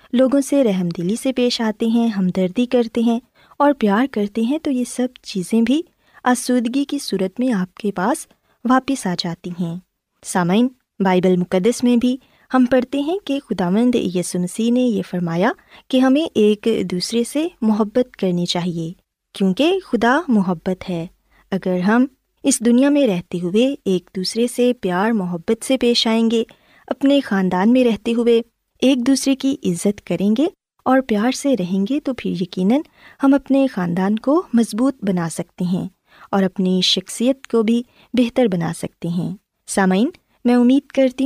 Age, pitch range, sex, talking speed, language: 20-39, 185-255 Hz, female, 165 wpm, Urdu